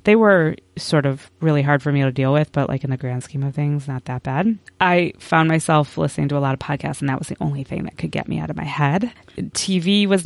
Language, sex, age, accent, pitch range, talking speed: English, female, 20-39, American, 140-200 Hz, 275 wpm